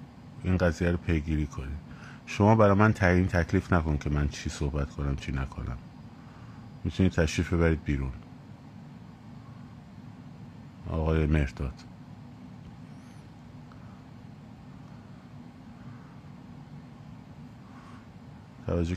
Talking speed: 75 wpm